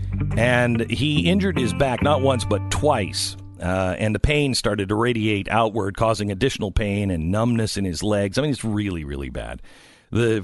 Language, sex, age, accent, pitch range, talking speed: English, male, 50-69, American, 95-130 Hz, 185 wpm